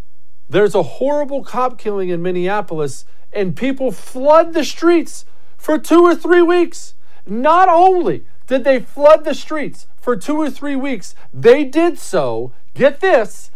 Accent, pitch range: American, 220-305 Hz